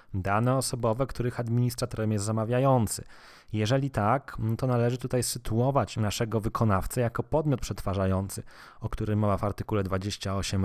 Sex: male